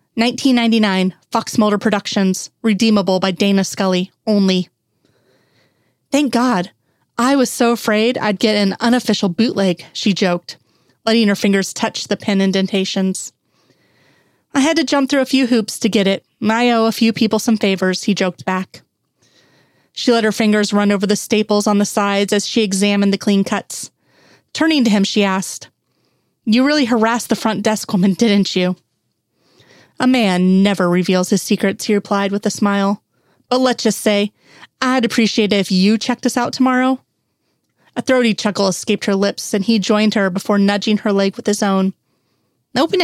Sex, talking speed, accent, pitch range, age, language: female, 175 wpm, American, 190-230 Hz, 30-49, English